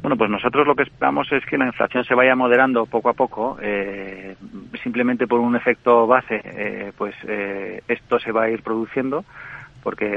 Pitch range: 105-120 Hz